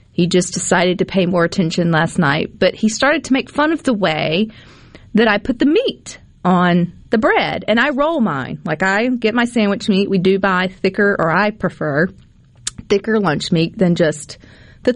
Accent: American